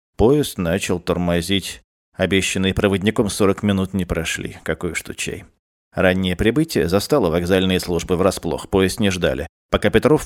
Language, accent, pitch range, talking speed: Russian, native, 85-100 Hz, 130 wpm